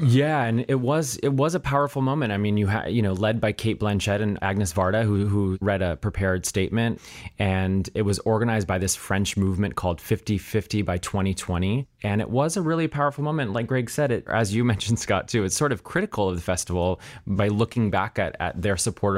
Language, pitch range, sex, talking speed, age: English, 95-115 Hz, male, 220 wpm, 30-49